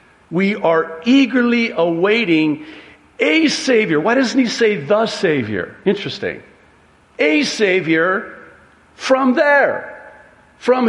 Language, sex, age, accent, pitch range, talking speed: English, male, 50-69, American, 130-200 Hz, 100 wpm